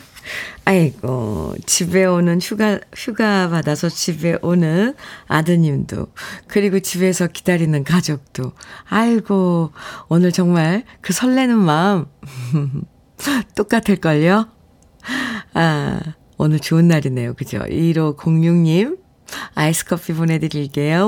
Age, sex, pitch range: 40-59, female, 165-210 Hz